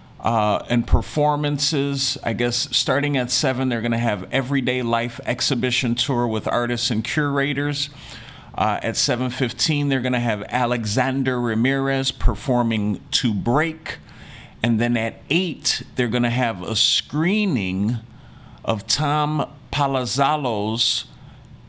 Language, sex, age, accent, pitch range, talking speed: English, male, 40-59, American, 120-150 Hz, 125 wpm